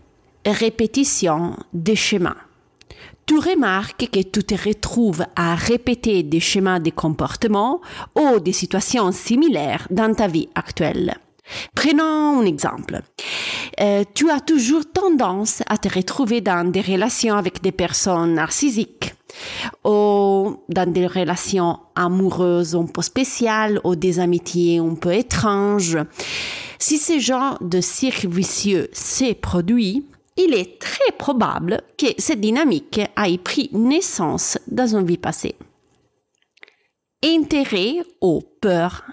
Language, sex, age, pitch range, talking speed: French, female, 40-59, 175-250 Hz, 125 wpm